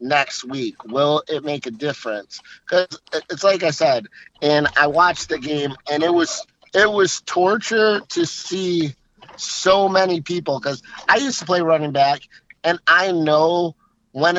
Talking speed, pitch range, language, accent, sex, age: 165 wpm, 145-180 Hz, English, American, male, 30-49